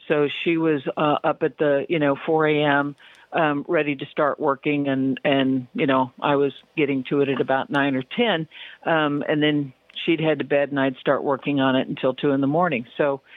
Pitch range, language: 140-165 Hz, English